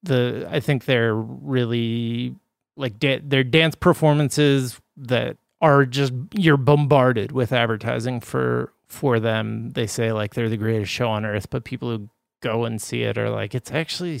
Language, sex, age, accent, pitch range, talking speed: English, male, 30-49, American, 120-140 Hz, 170 wpm